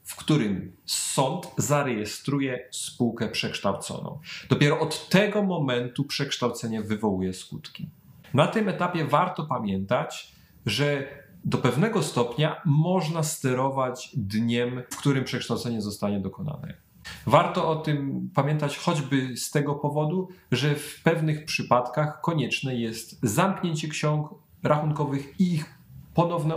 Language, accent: Polish, native